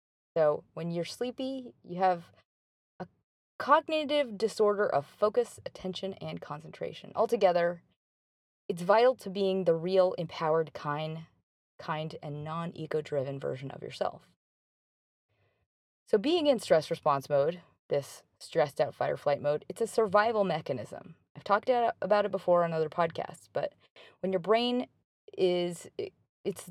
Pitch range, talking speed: 150-215 Hz, 135 wpm